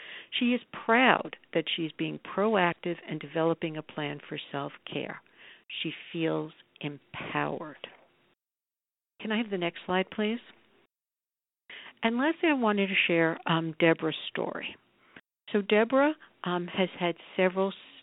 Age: 60-79